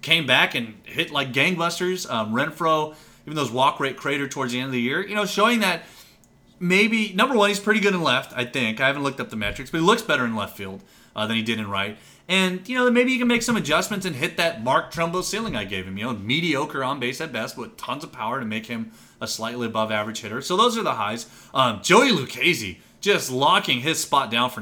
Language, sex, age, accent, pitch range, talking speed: English, male, 30-49, American, 115-170 Hz, 245 wpm